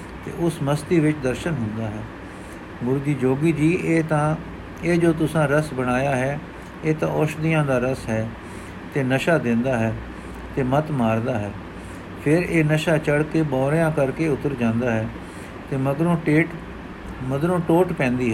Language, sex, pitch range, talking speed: Punjabi, male, 115-160 Hz, 155 wpm